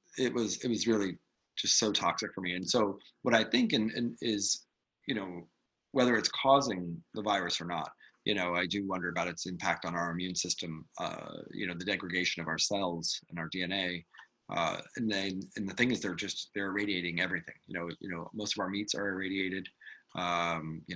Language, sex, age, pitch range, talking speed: English, male, 30-49, 85-105 Hz, 210 wpm